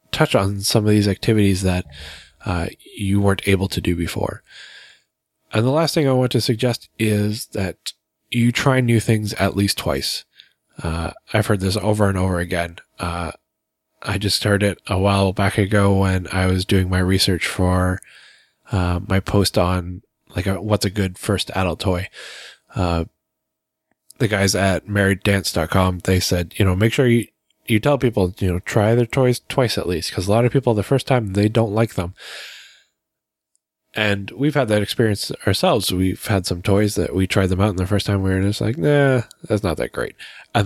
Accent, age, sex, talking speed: American, 20-39, male, 190 wpm